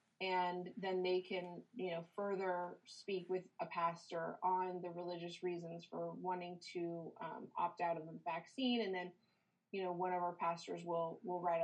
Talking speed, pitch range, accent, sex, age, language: 180 wpm, 180-210 Hz, American, female, 30-49, English